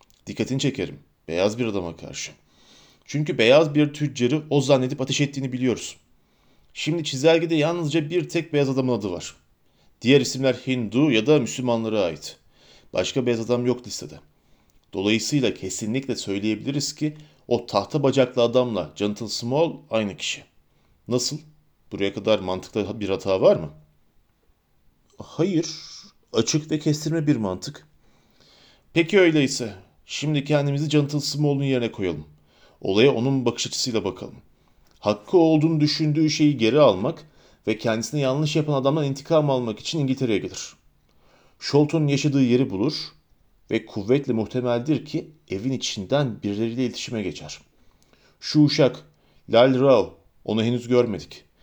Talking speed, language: 130 wpm, Turkish